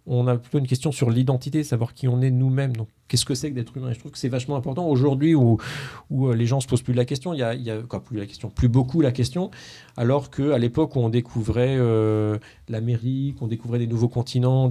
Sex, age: male, 40-59